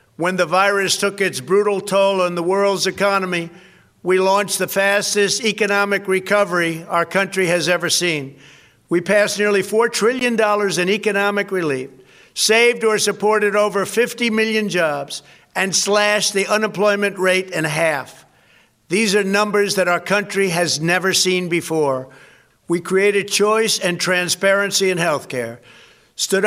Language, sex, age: English, male, 60-79